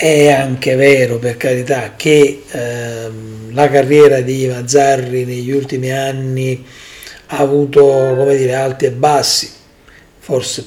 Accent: native